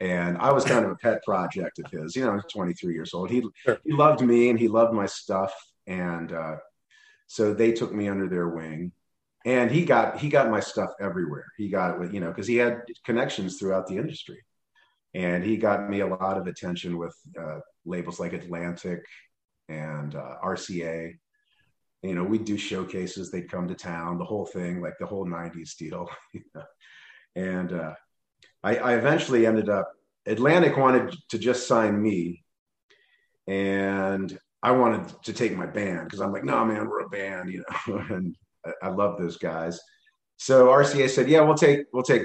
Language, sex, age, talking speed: English, male, 40-59, 190 wpm